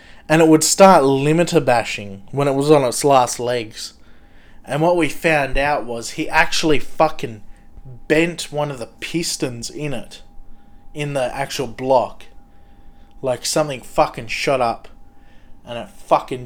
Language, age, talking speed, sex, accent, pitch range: English, 20-39, 150 wpm, male, Australian, 105-155 Hz